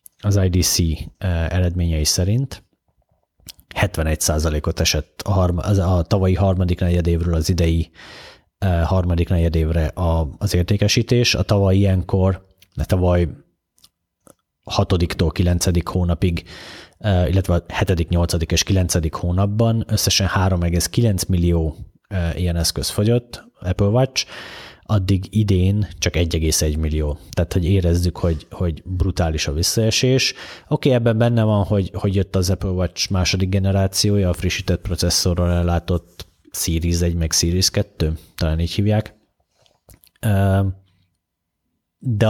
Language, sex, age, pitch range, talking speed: Hungarian, male, 30-49, 85-100 Hz, 125 wpm